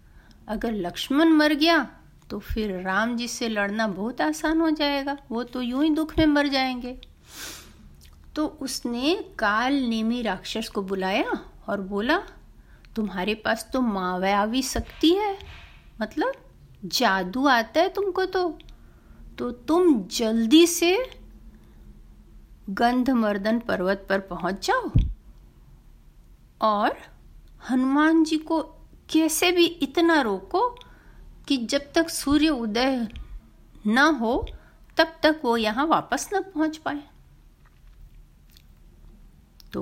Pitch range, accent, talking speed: 205-305 Hz, native, 115 wpm